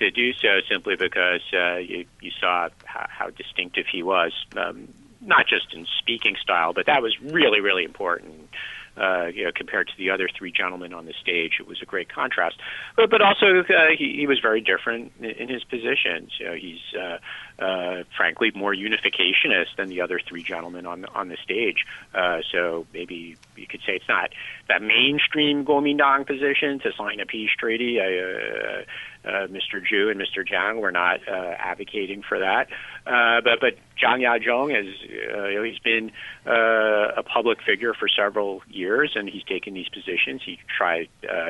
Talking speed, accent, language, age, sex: 185 wpm, American, English, 40-59, male